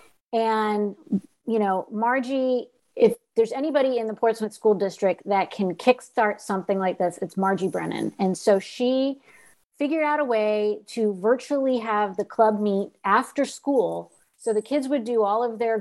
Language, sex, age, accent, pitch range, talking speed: English, female, 30-49, American, 205-245 Hz, 165 wpm